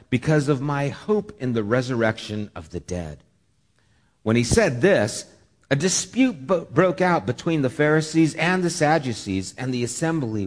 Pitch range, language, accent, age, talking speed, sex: 100-150 Hz, English, American, 50-69, 155 wpm, male